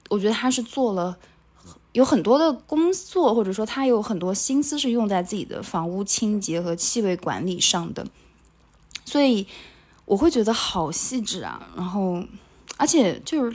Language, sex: Chinese, female